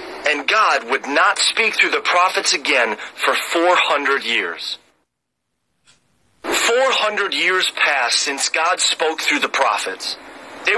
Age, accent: 40-59, American